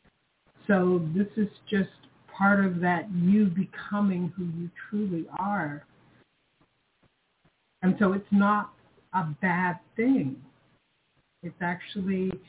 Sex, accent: female, American